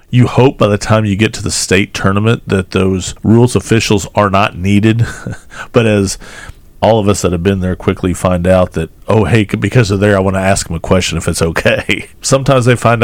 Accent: American